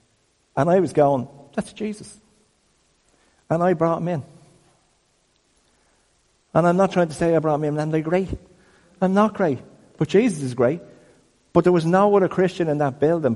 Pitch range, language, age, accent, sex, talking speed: 110-160 Hz, English, 50-69, British, male, 180 wpm